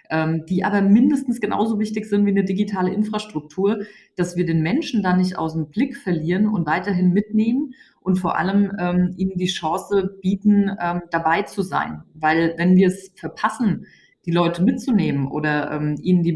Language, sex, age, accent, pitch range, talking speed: German, female, 20-39, German, 165-200 Hz, 170 wpm